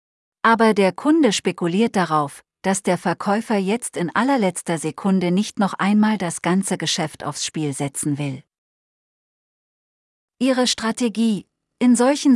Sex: female